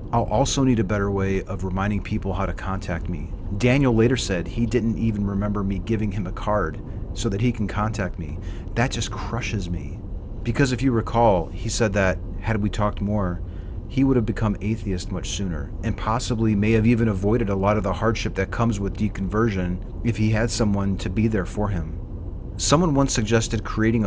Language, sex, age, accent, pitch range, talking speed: English, male, 30-49, American, 95-115 Hz, 200 wpm